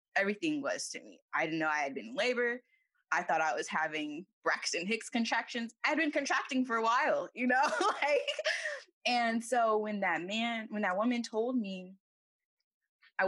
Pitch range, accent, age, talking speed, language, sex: 160-240 Hz, American, 10-29, 180 wpm, English, female